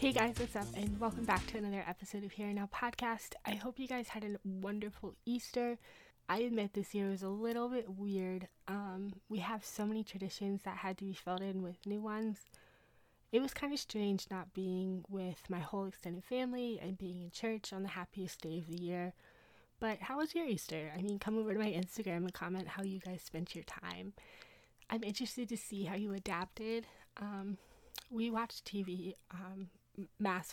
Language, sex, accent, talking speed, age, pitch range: English, female, American, 195 wpm, 20-39, 190-225 Hz